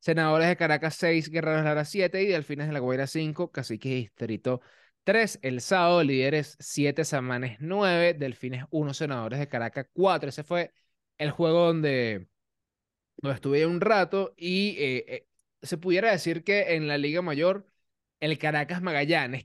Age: 20-39